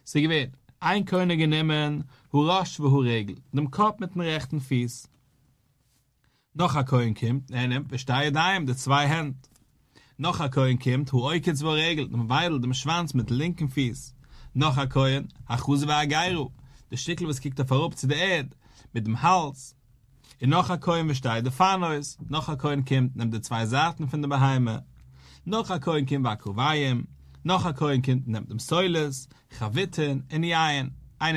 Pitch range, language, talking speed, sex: 125-155 Hz, English, 145 wpm, male